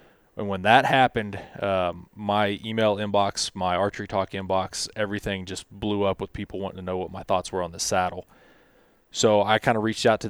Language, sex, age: English, male, 20-39